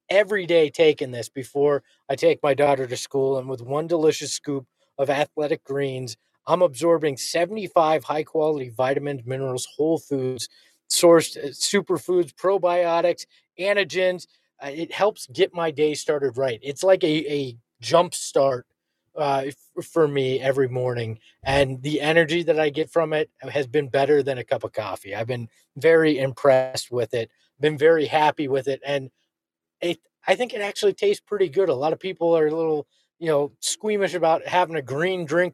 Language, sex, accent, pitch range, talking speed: English, male, American, 135-175 Hz, 170 wpm